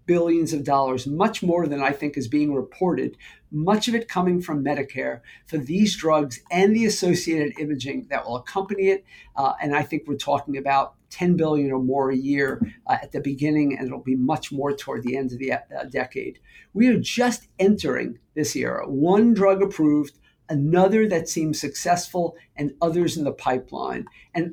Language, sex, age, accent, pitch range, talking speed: English, male, 50-69, American, 140-195 Hz, 185 wpm